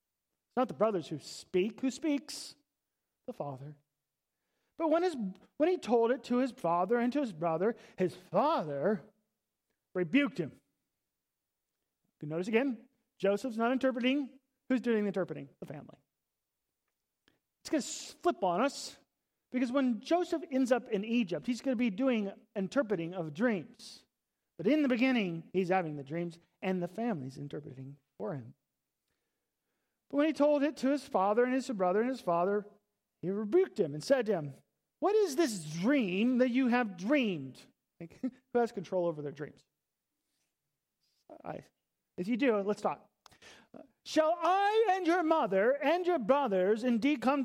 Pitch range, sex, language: 180-265 Hz, male, English